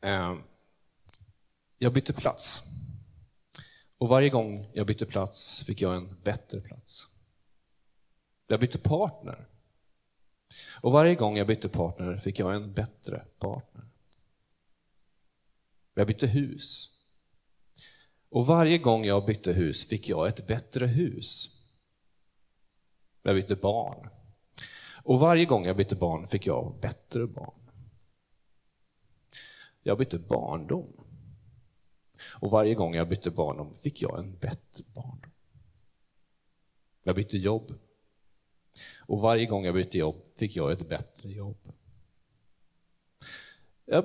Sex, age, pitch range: male, 40-59, 95-125 Hz